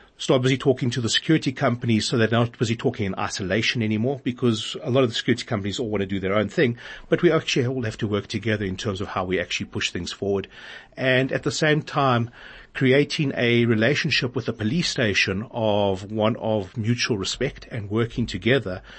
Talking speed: 210 wpm